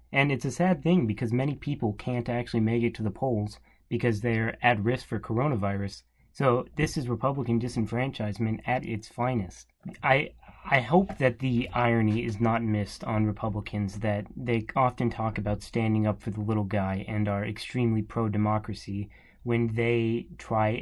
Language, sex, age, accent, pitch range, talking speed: English, male, 30-49, American, 105-120 Hz, 165 wpm